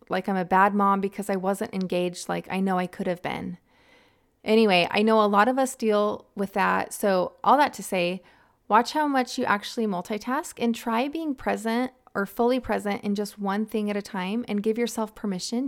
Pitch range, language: 195-235 Hz, English